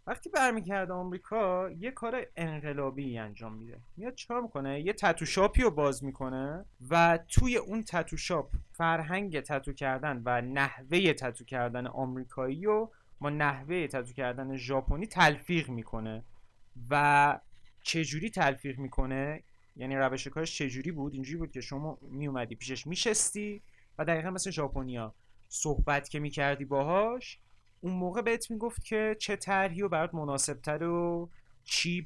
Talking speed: 140 wpm